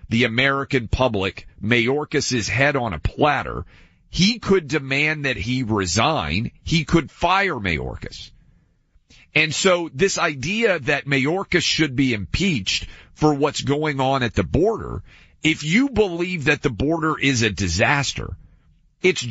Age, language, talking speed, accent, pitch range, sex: 40-59, English, 135 wpm, American, 130-190 Hz, male